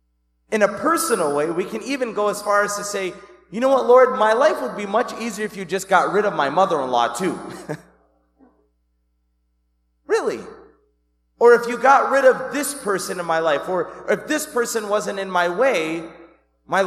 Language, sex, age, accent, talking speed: English, male, 30-49, American, 190 wpm